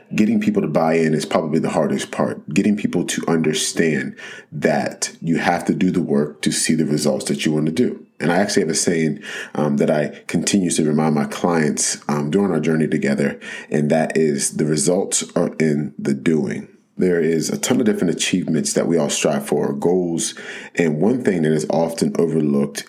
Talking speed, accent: 205 wpm, American